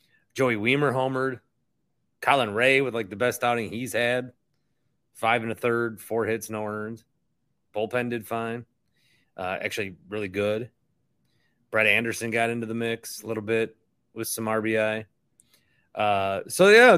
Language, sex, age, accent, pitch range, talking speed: English, male, 30-49, American, 110-130 Hz, 150 wpm